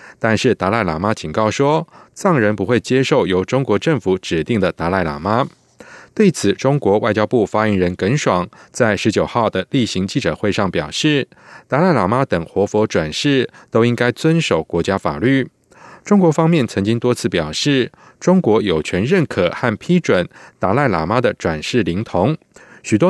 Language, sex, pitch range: German, male, 95-145 Hz